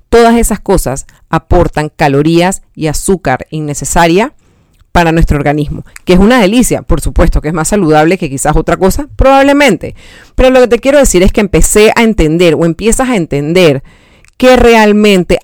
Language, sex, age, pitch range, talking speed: Spanish, female, 40-59, 155-215 Hz, 165 wpm